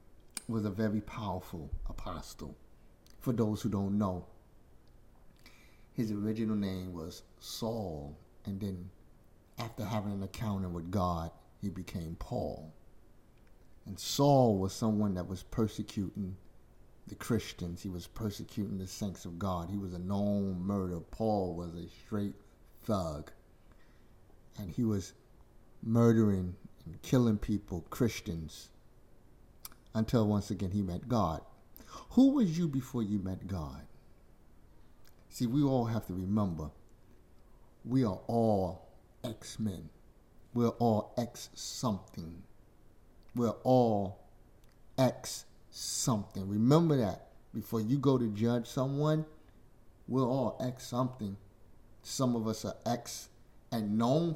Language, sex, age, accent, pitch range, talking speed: English, male, 50-69, American, 95-115 Hz, 120 wpm